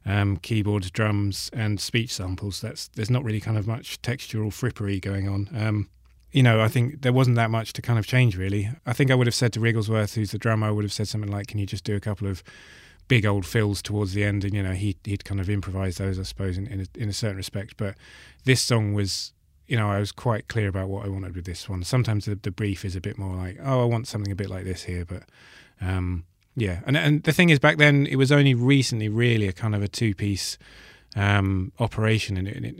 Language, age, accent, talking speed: English, 30-49, British, 250 wpm